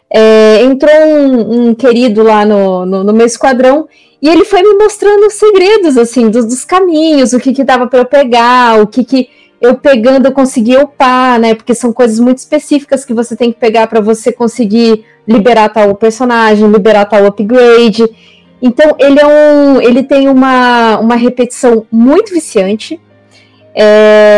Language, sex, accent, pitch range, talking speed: Portuguese, female, Brazilian, 220-285 Hz, 165 wpm